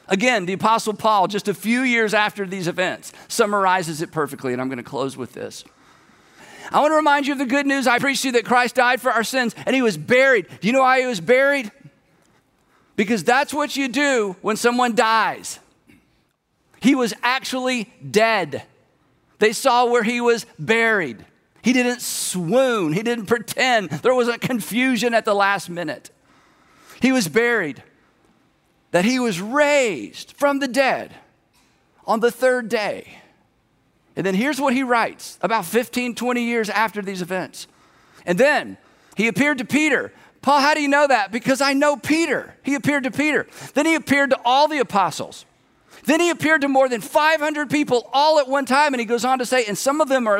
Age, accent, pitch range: 50-69, American, 210-270 Hz